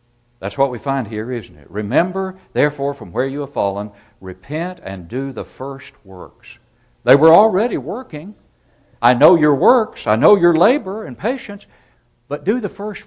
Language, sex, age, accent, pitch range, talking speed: English, male, 60-79, American, 105-140 Hz, 175 wpm